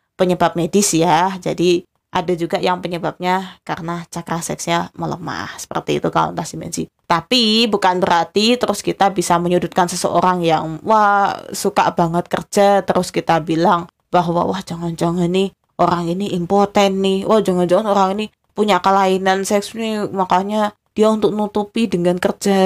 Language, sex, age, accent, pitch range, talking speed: Indonesian, female, 20-39, native, 175-205 Hz, 150 wpm